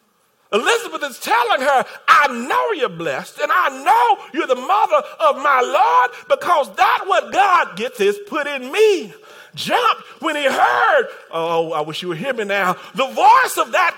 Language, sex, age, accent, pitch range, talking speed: English, male, 40-59, American, 275-415 Hz, 180 wpm